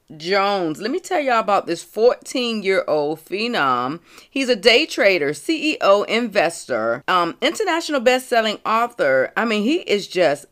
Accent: American